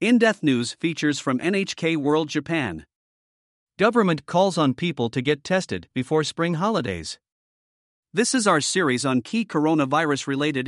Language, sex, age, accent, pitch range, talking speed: English, male, 50-69, American, 135-175 Hz, 135 wpm